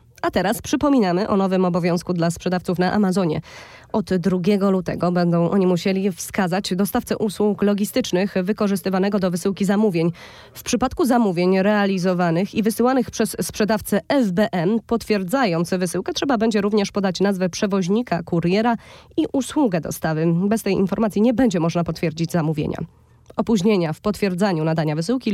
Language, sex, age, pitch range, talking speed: Polish, female, 20-39, 175-225 Hz, 135 wpm